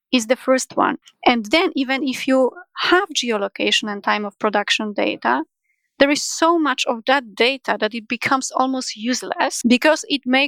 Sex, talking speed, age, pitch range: female, 180 wpm, 30-49, 225-275 Hz